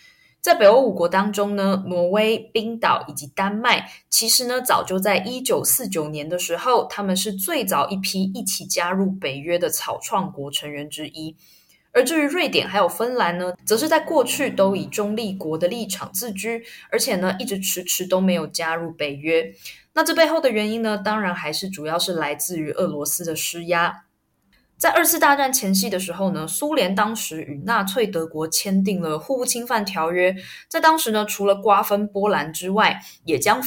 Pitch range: 170-225 Hz